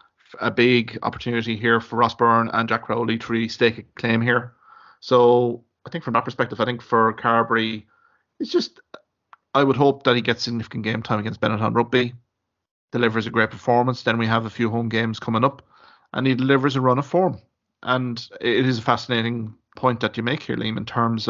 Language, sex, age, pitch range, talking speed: English, male, 30-49, 110-125 Hz, 205 wpm